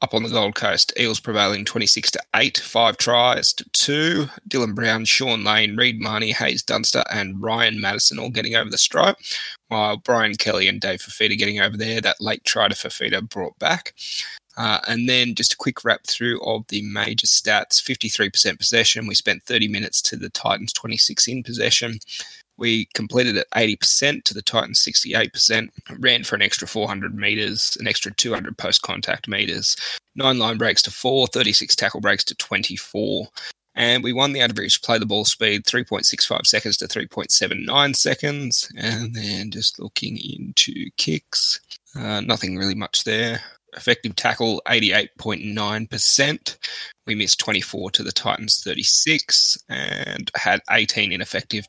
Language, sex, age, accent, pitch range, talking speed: English, male, 20-39, Australian, 105-125 Hz, 160 wpm